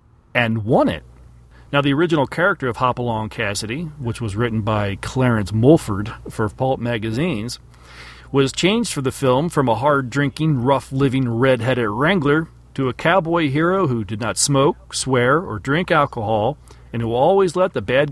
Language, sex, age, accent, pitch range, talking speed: English, male, 40-59, American, 110-150 Hz, 160 wpm